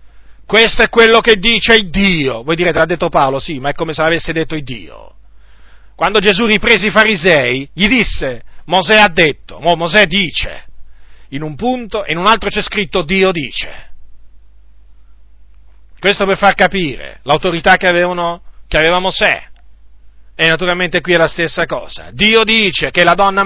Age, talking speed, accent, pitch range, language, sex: 40-59, 170 wpm, native, 135-205 Hz, Italian, male